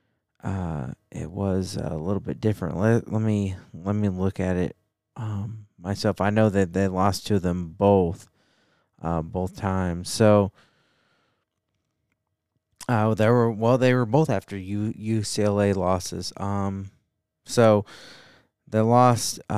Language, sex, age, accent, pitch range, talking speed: English, male, 20-39, American, 95-110 Hz, 135 wpm